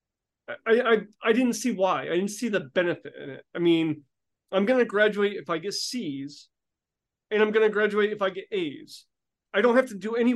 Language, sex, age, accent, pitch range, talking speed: English, male, 30-49, American, 185-235 Hz, 210 wpm